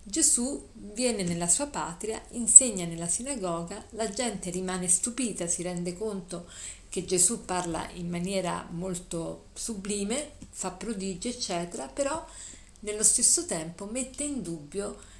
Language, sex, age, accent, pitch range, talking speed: Italian, female, 50-69, native, 175-230 Hz, 125 wpm